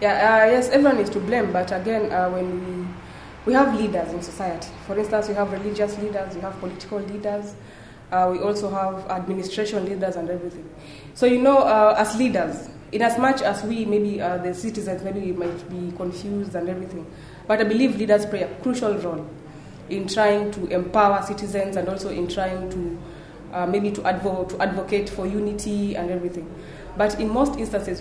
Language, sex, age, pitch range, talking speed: English, female, 20-39, 185-215 Hz, 185 wpm